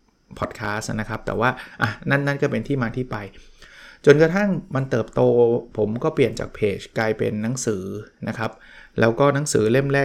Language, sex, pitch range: Thai, male, 115-145 Hz